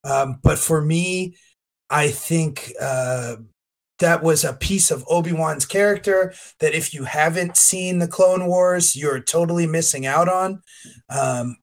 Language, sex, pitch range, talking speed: English, male, 135-165 Hz, 145 wpm